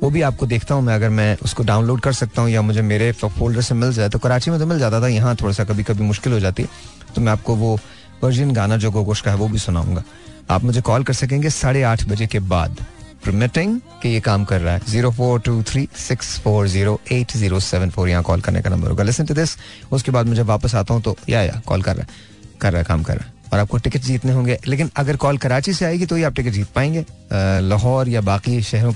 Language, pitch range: Hindi, 105-130 Hz